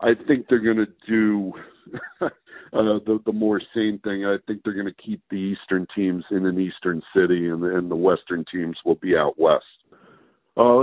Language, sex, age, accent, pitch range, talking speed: English, male, 50-69, American, 95-120 Hz, 195 wpm